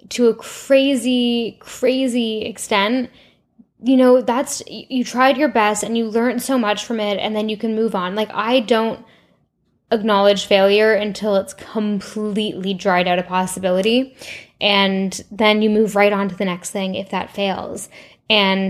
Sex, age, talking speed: female, 10-29, 165 wpm